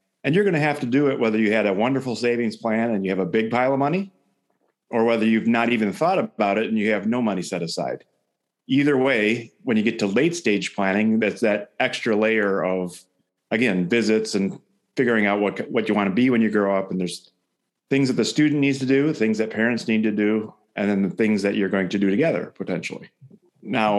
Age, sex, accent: 40-59, male, American